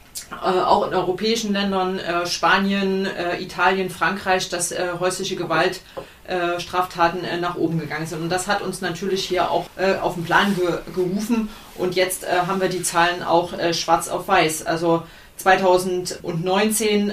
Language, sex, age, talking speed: German, female, 30-49, 165 wpm